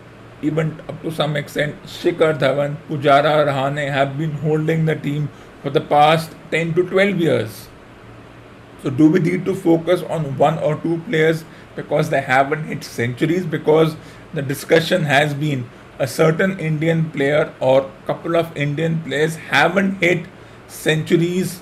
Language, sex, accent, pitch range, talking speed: English, male, Indian, 140-165 Hz, 150 wpm